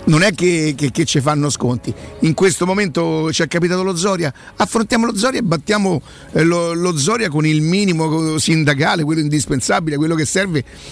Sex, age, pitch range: male, 50-69, 150-180 Hz